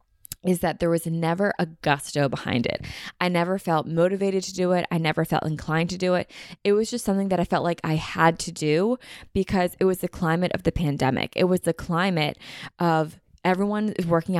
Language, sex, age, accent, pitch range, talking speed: English, female, 20-39, American, 160-190 Hz, 215 wpm